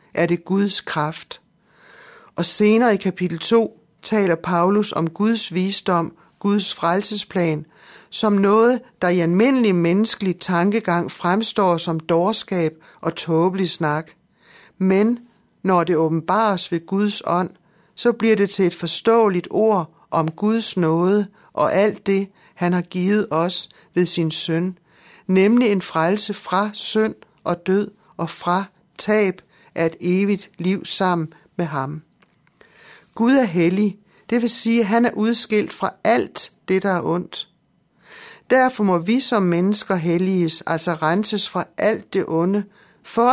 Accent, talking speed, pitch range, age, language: native, 140 wpm, 170-210 Hz, 60-79, Danish